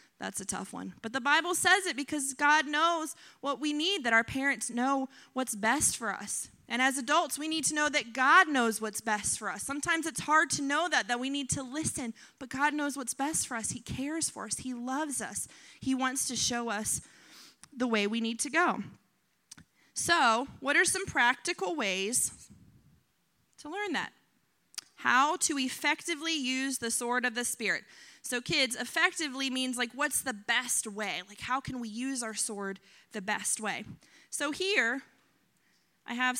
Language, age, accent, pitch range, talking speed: English, 30-49, American, 220-295 Hz, 190 wpm